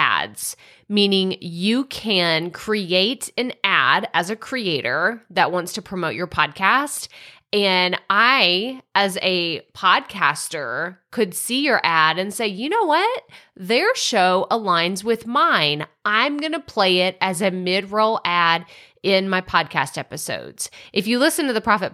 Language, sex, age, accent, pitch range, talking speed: English, female, 30-49, American, 175-215 Hz, 150 wpm